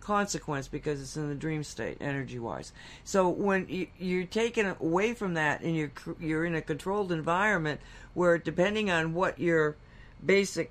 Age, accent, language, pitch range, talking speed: 60-79, American, English, 140-175 Hz, 160 wpm